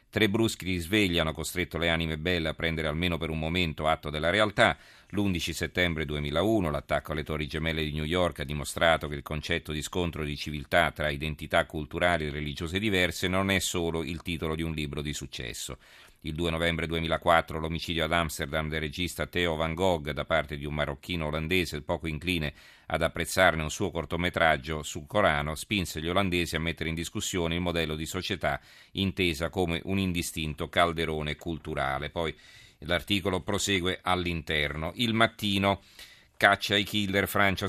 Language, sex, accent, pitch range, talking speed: Italian, male, native, 80-95 Hz, 170 wpm